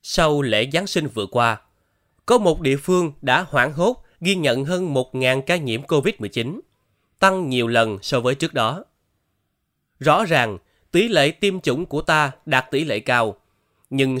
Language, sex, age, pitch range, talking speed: Vietnamese, male, 20-39, 120-170 Hz, 170 wpm